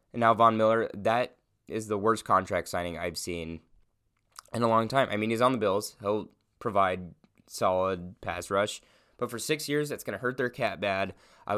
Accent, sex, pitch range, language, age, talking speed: American, male, 95-125 Hz, English, 20-39, 195 wpm